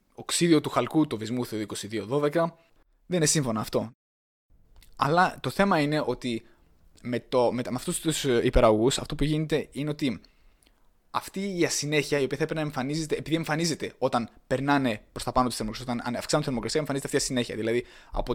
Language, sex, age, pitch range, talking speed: Greek, male, 20-39, 115-155 Hz, 180 wpm